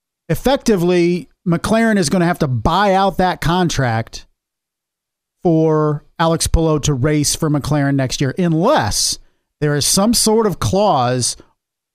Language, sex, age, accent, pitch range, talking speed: English, male, 50-69, American, 140-175 Hz, 130 wpm